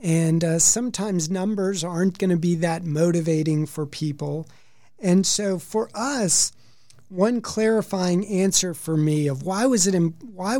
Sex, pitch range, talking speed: male, 145-190 Hz, 155 wpm